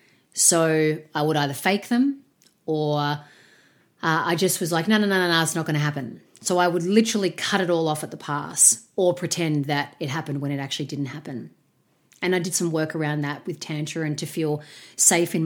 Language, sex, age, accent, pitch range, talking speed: English, female, 30-49, Australian, 150-170 Hz, 215 wpm